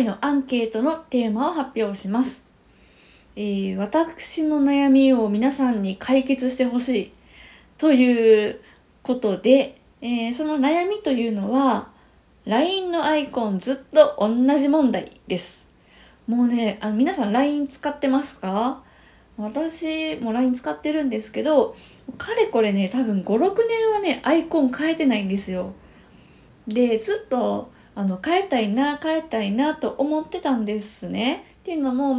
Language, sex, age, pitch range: Japanese, female, 20-39, 220-310 Hz